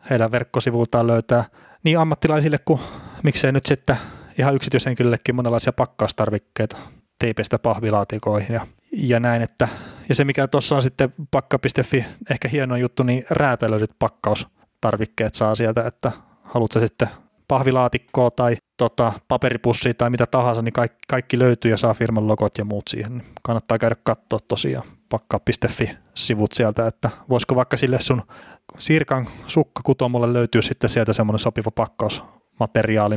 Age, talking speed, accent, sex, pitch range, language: 30-49, 135 wpm, native, male, 110-130 Hz, Finnish